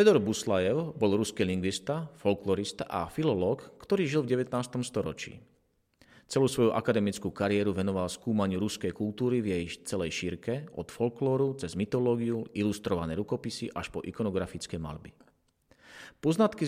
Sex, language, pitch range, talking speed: male, Slovak, 95-130 Hz, 130 wpm